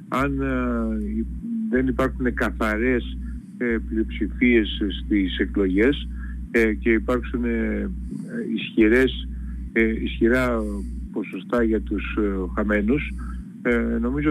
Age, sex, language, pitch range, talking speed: 50-69, male, Greek, 110-135 Hz, 65 wpm